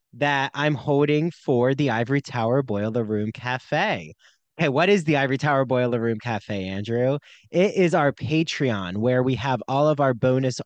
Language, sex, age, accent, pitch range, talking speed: English, male, 20-39, American, 125-170 Hz, 175 wpm